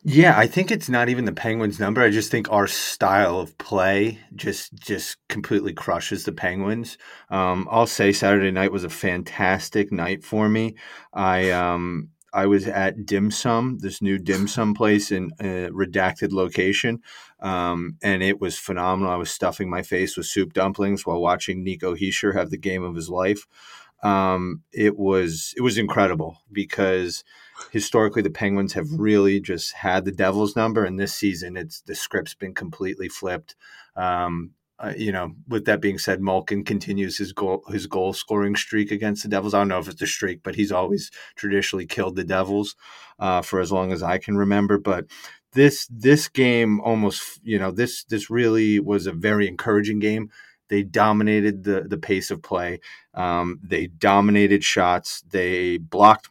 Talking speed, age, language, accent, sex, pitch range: 180 wpm, 30-49, English, American, male, 95-105 Hz